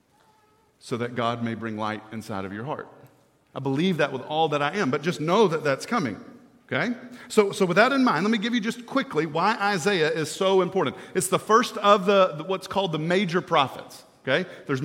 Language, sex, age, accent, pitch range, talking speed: English, male, 40-59, American, 155-200 Hz, 220 wpm